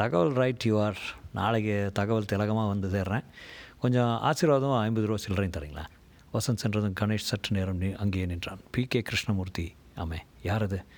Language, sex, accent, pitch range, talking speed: Tamil, male, native, 95-120 Hz, 140 wpm